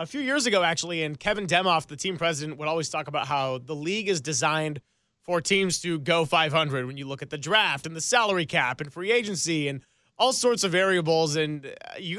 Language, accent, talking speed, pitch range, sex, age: English, American, 220 wpm, 160-195 Hz, male, 30-49